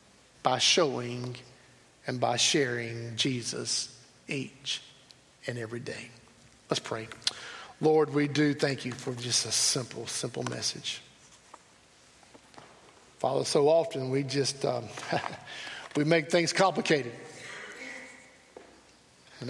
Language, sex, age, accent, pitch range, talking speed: English, male, 50-69, American, 130-155 Hz, 105 wpm